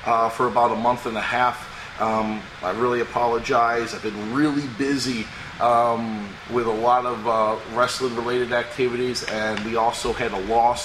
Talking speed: 165 wpm